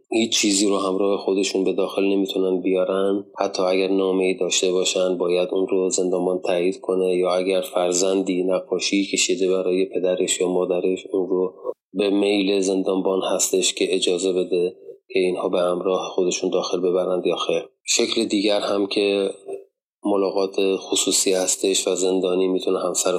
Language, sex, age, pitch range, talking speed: Persian, male, 30-49, 95-100 Hz, 150 wpm